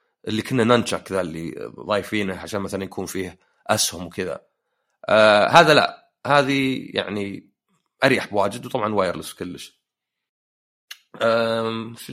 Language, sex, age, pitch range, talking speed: Arabic, male, 30-49, 105-145 Hz, 120 wpm